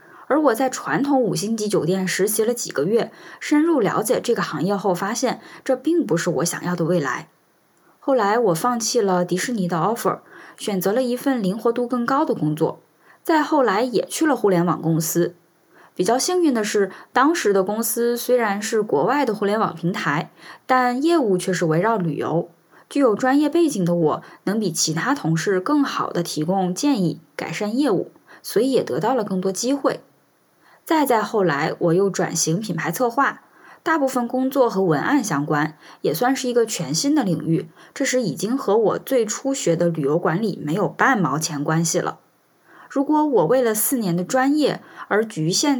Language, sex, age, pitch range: Chinese, female, 10-29, 175-255 Hz